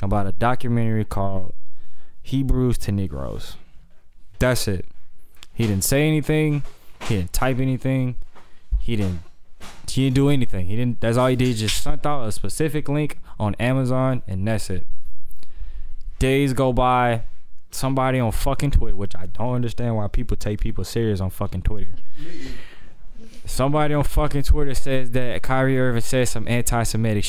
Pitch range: 100-140 Hz